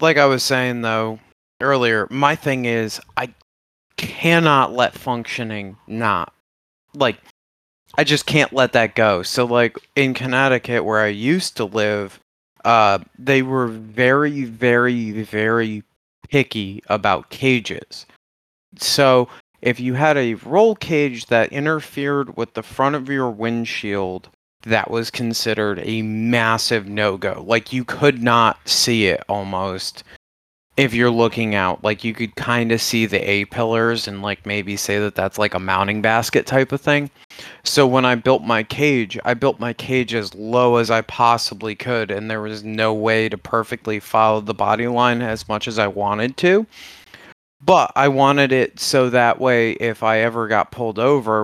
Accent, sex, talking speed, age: American, male, 160 wpm, 30-49